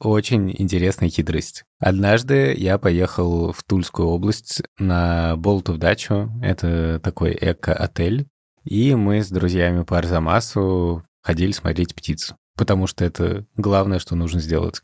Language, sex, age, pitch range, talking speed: Russian, male, 20-39, 85-105 Hz, 130 wpm